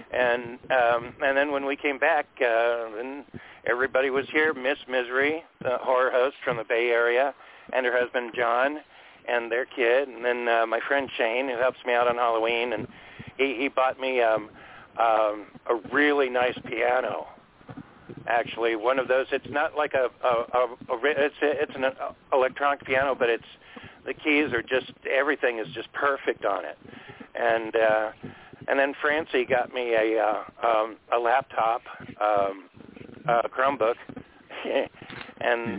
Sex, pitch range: male, 115-140 Hz